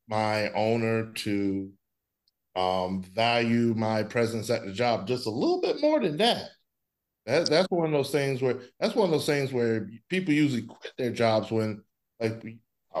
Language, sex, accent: English, male, American